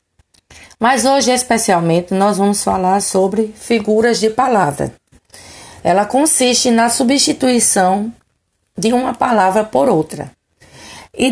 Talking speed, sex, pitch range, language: 105 wpm, female, 170-255 Hz, Portuguese